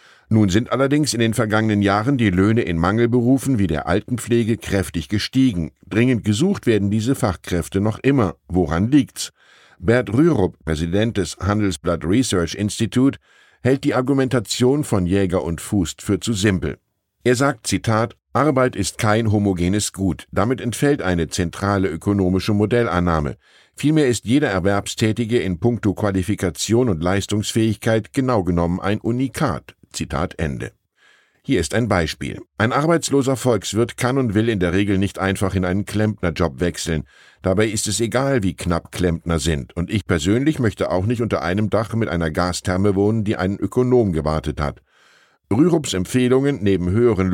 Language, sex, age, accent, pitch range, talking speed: German, male, 10-29, German, 90-120 Hz, 150 wpm